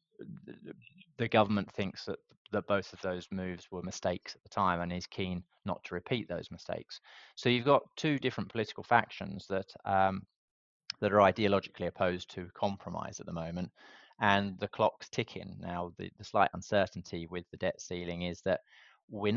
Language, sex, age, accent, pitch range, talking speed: English, male, 20-39, British, 90-100 Hz, 175 wpm